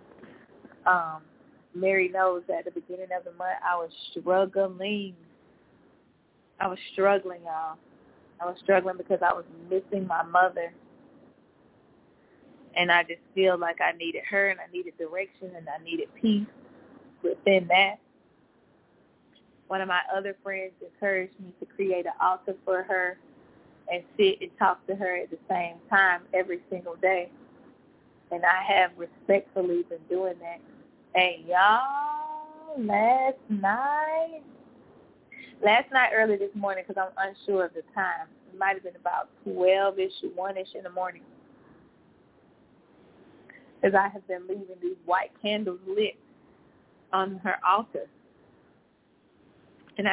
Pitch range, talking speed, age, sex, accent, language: 185-210 Hz, 140 wpm, 20-39, female, American, English